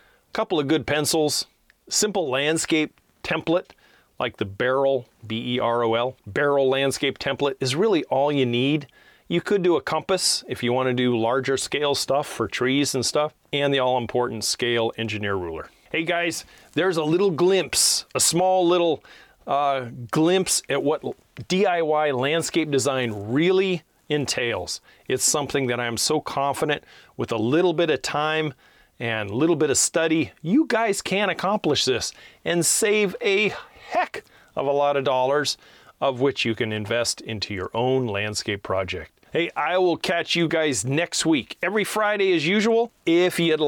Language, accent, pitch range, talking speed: English, American, 125-175 Hz, 160 wpm